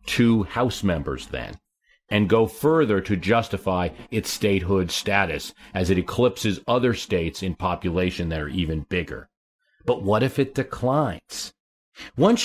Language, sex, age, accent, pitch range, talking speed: English, male, 40-59, American, 90-125 Hz, 140 wpm